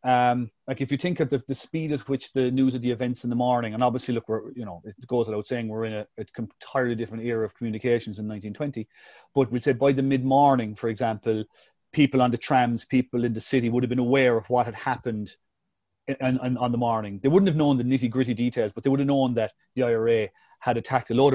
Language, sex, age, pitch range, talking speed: English, male, 30-49, 115-130 Hz, 245 wpm